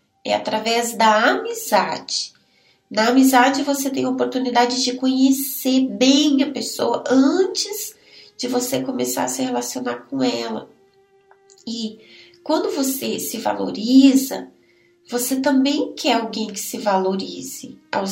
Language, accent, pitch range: Portuguese, Brazilian, 210-270 Hz